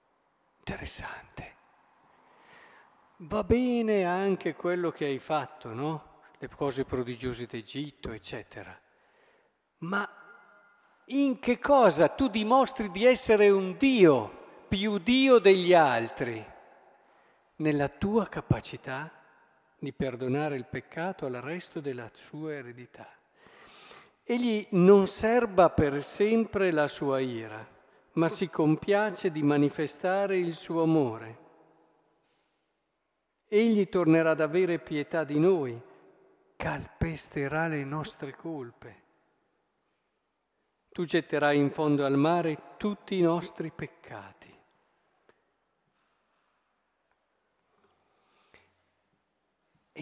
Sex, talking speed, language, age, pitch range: male, 95 wpm, Italian, 50-69, 150-205 Hz